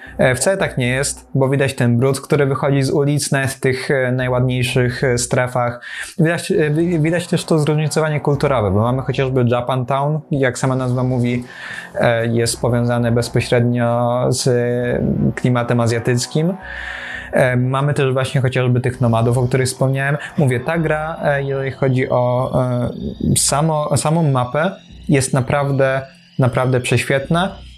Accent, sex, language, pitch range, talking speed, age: native, male, Polish, 125-145 Hz, 125 wpm, 20-39